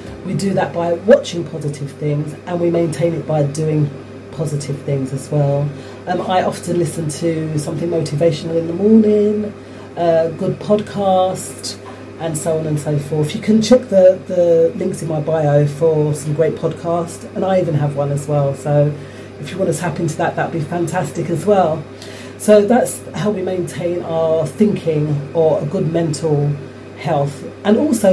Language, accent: English, British